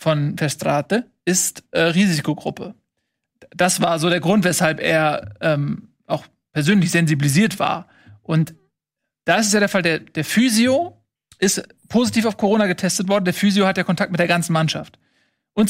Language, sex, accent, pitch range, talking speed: German, male, German, 165-205 Hz, 165 wpm